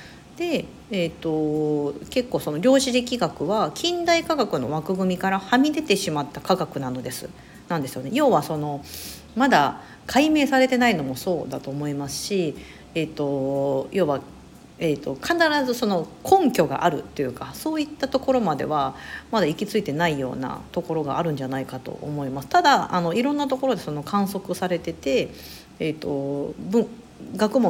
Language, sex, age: Japanese, female, 50-69